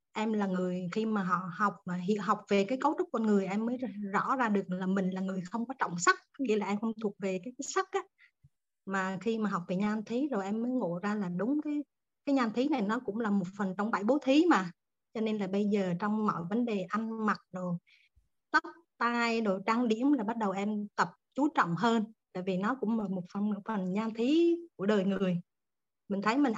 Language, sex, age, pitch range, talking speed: Vietnamese, female, 20-39, 195-235 Hz, 245 wpm